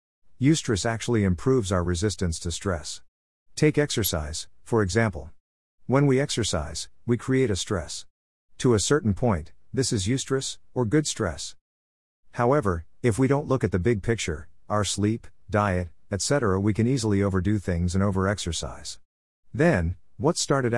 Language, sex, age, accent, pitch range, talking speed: English, male, 50-69, American, 85-115 Hz, 145 wpm